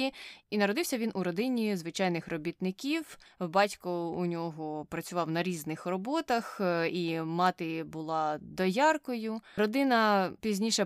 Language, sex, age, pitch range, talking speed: Ukrainian, female, 20-39, 165-205 Hz, 110 wpm